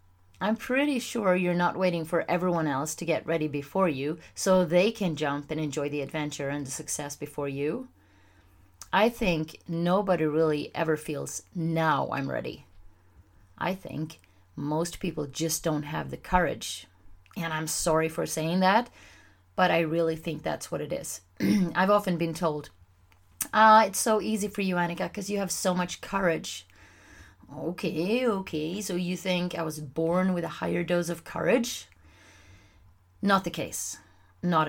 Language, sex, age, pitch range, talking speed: English, female, 30-49, 140-180 Hz, 165 wpm